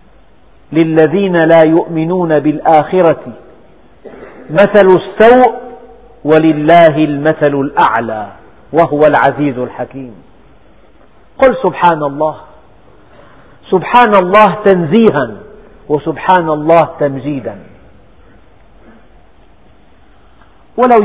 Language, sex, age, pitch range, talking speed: Arabic, male, 50-69, 145-195 Hz, 65 wpm